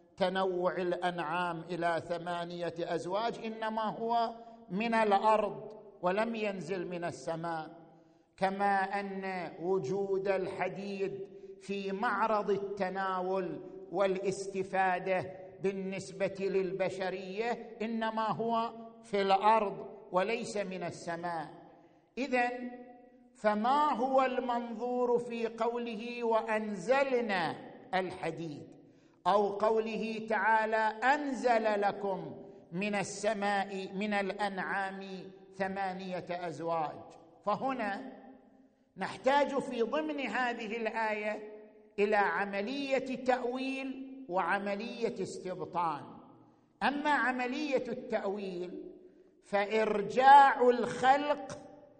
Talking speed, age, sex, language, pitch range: 75 wpm, 50-69, male, Arabic, 190-245 Hz